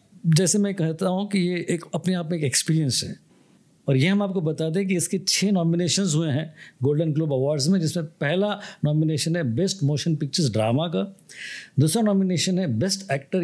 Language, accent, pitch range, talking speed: Hindi, native, 145-190 Hz, 190 wpm